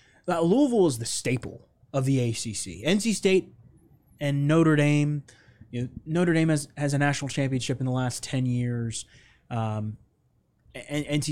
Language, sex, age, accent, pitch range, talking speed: English, male, 20-39, American, 120-150 Hz, 160 wpm